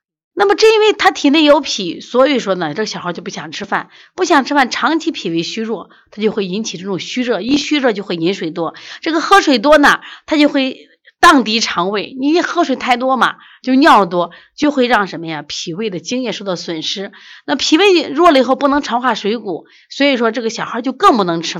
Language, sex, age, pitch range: Chinese, female, 30-49, 180-290 Hz